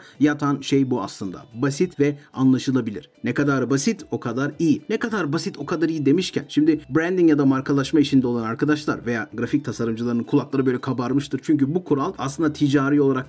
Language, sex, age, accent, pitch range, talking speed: Turkish, male, 40-59, native, 135-175 Hz, 180 wpm